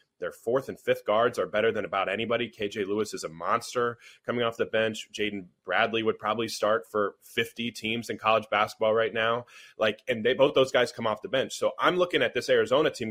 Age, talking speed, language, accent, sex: 30-49, 225 wpm, English, American, male